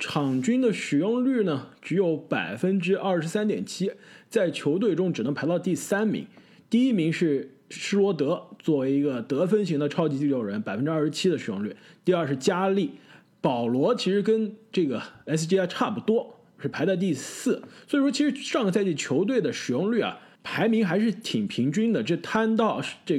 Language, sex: Chinese, male